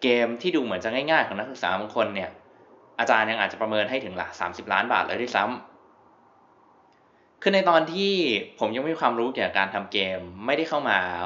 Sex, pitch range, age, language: male, 105-130 Hz, 20-39, Thai